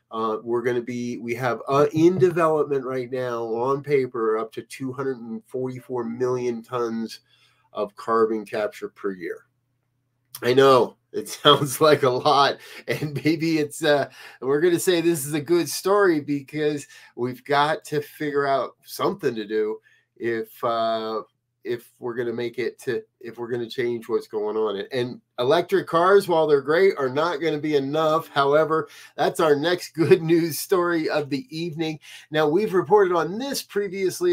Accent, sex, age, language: American, male, 30-49, English